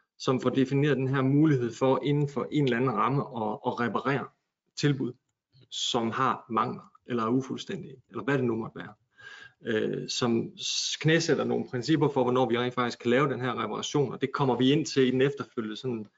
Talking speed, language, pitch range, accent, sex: 185 wpm, Danish, 125-145 Hz, native, male